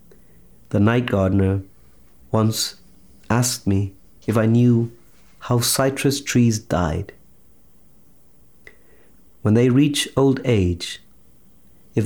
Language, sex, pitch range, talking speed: English, male, 100-120 Hz, 95 wpm